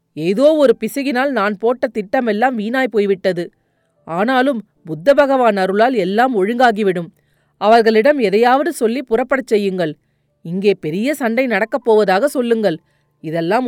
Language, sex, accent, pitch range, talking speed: Tamil, female, native, 190-255 Hz, 115 wpm